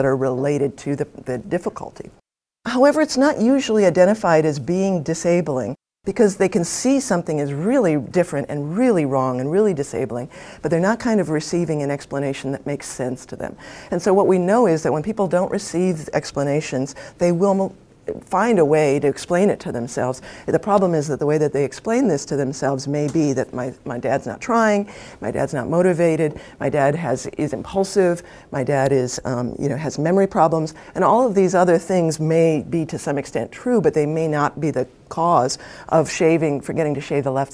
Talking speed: 205 wpm